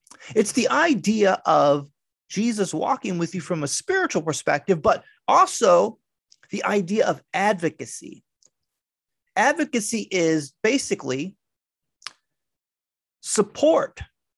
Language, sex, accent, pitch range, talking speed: English, male, American, 150-235 Hz, 90 wpm